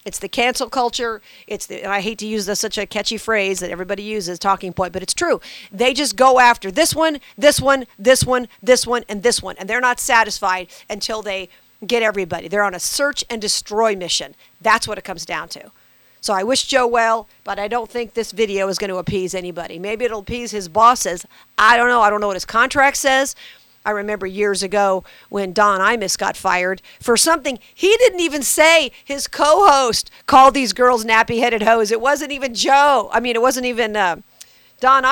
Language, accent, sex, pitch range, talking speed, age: English, American, female, 205-270 Hz, 205 wpm, 50-69